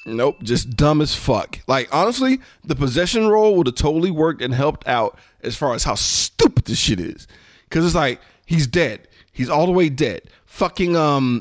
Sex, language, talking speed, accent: male, English, 195 wpm, American